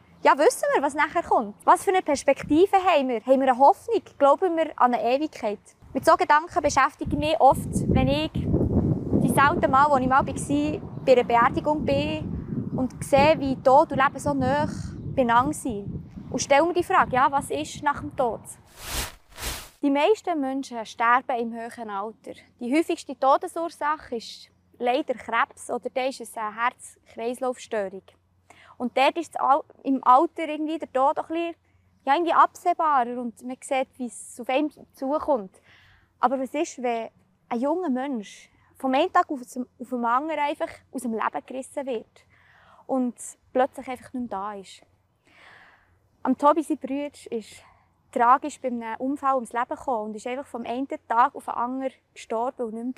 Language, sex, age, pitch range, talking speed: German, female, 20-39, 245-295 Hz, 170 wpm